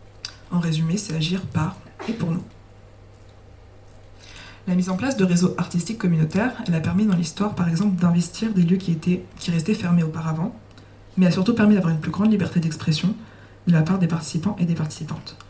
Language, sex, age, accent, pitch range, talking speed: French, female, 20-39, French, 155-185 Hz, 190 wpm